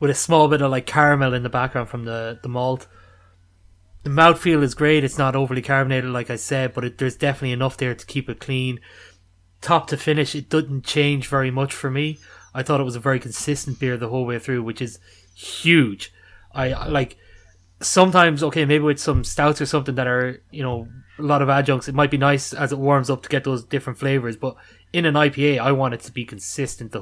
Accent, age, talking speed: Irish, 20-39, 225 wpm